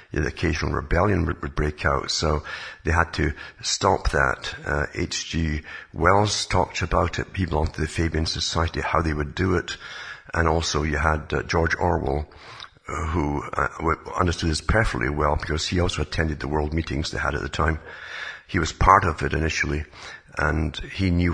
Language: English